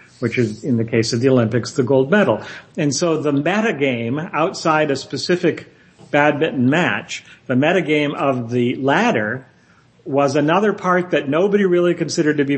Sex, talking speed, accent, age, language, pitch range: male, 160 wpm, American, 50-69, English, 130-170 Hz